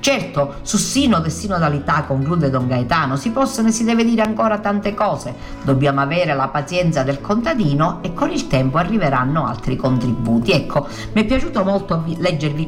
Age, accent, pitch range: 50-69, native, 140-205 Hz